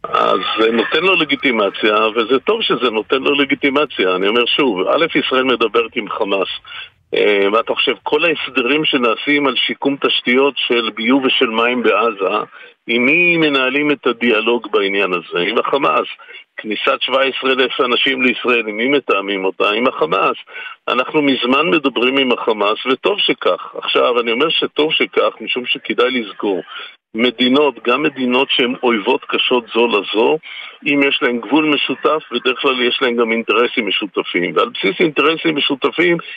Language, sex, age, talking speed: Hebrew, male, 50-69, 150 wpm